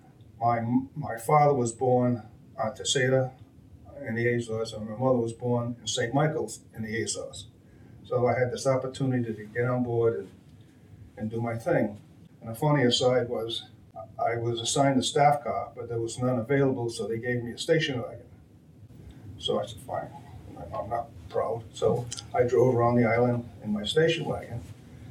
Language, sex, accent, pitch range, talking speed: English, male, American, 115-130 Hz, 180 wpm